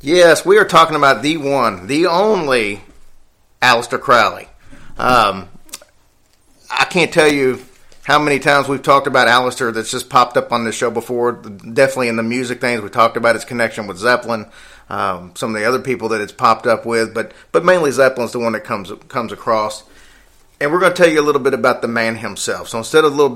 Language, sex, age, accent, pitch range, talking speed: English, male, 40-59, American, 110-130 Hz, 205 wpm